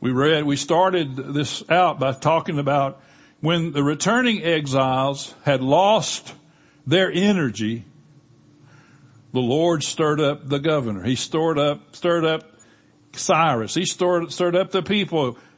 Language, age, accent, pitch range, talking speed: English, 60-79, American, 140-195 Hz, 135 wpm